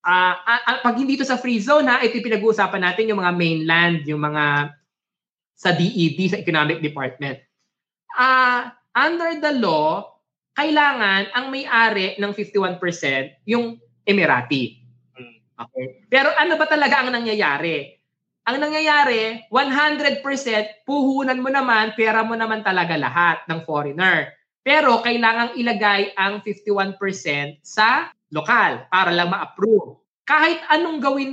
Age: 20-39